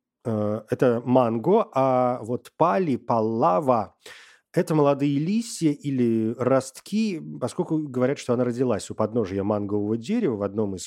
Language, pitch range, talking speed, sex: Russian, 110-160 Hz, 125 wpm, male